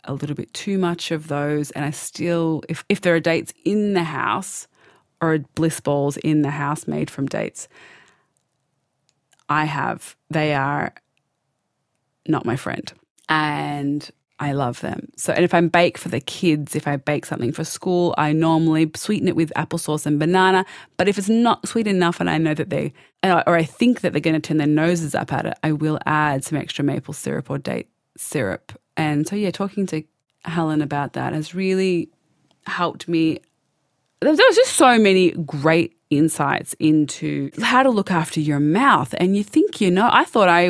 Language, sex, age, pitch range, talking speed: English, female, 20-39, 150-185 Hz, 190 wpm